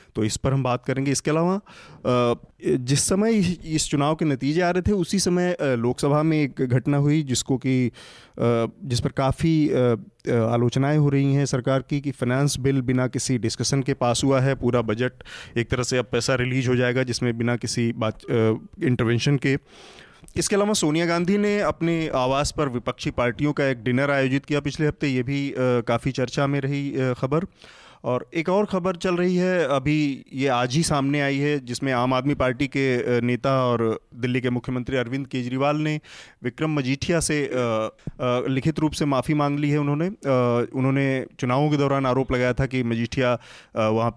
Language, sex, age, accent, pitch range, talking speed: Hindi, male, 30-49, native, 125-145 Hz, 180 wpm